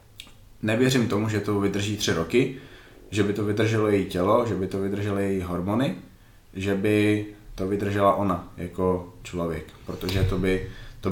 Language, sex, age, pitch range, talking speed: Slovak, male, 20-39, 95-110 Hz, 160 wpm